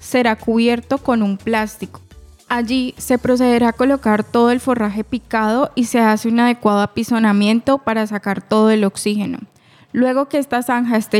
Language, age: Spanish, 10-29